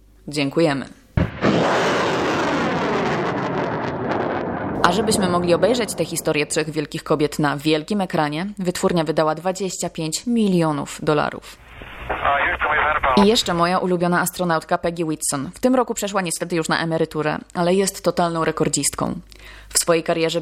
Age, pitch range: 20-39, 155-180 Hz